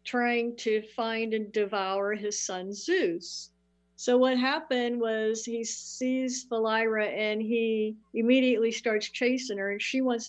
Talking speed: 140 wpm